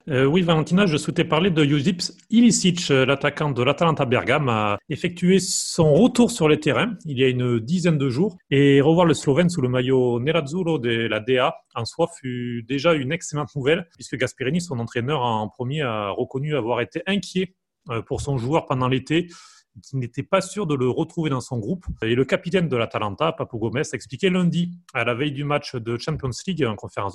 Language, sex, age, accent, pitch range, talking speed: French, male, 30-49, French, 120-165 Hz, 205 wpm